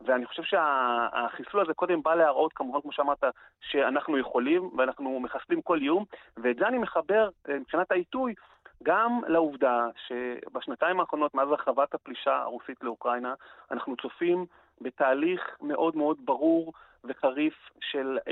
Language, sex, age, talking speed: Hebrew, male, 30-49, 130 wpm